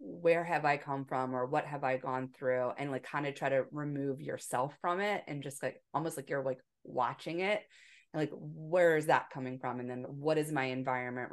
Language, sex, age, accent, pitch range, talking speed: English, female, 20-39, American, 125-145 Hz, 220 wpm